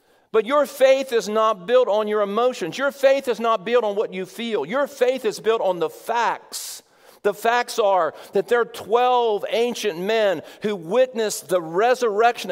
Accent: American